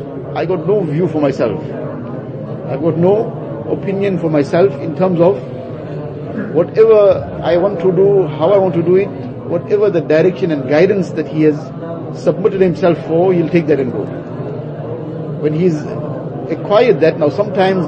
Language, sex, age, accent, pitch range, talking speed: English, male, 50-69, Indian, 145-180 Hz, 160 wpm